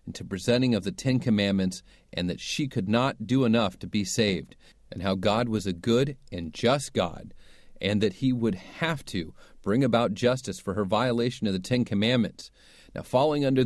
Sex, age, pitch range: male, 40-59, 100-135 Hz